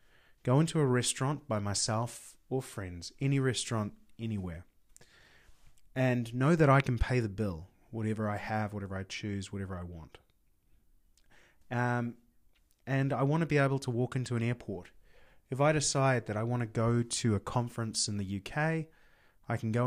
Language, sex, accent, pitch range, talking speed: English, male, Australian, 105-140 Hz, 170 wpm